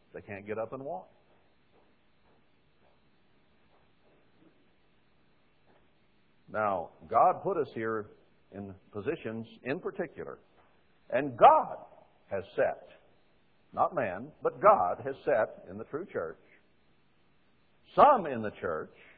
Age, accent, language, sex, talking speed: 60-79, American, English, male, 105 wpm